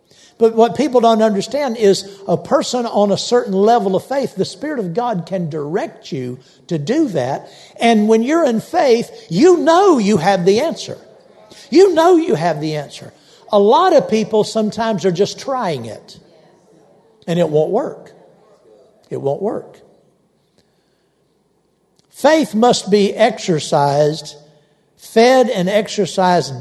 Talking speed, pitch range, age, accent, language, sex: 145 wpm, 170-230 Hz, 60-79, American, English, male